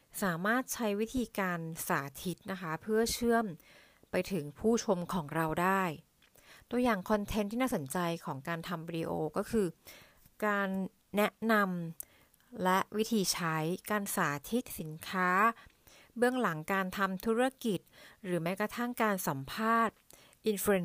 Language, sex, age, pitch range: Thai, female, 60-79, 170-215 Hz